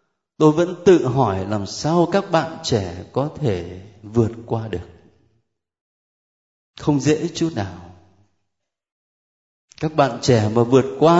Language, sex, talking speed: Vietnamese, male, 130 wpm